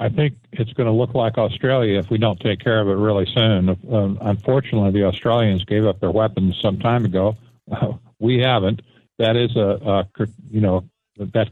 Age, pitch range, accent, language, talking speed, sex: 60-79, 105-125 Hz, American, English, 200 wpm, male